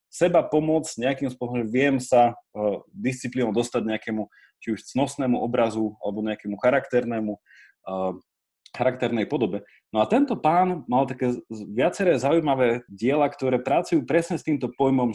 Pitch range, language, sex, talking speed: 115-145 Hz, Slovak, male, 140 wpm